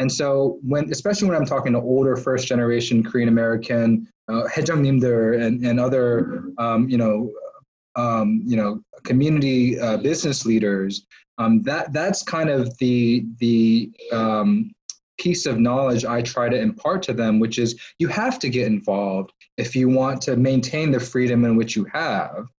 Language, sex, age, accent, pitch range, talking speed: English, male, 20-39, American, 115-135 Hz, 160 wpm